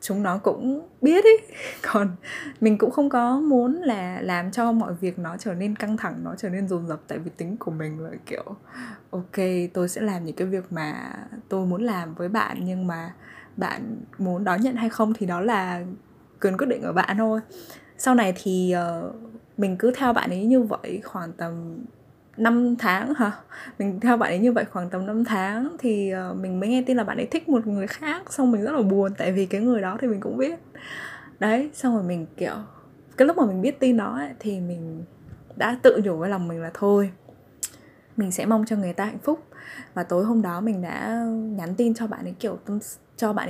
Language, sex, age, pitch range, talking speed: Vietnamese, female, 10-29, 185-240 Hz, 220 wpm